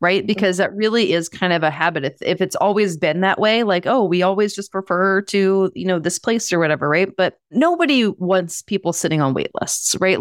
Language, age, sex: English, 30-49, female